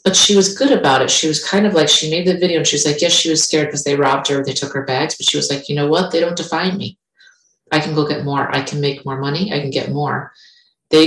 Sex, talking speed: female, 310 wpm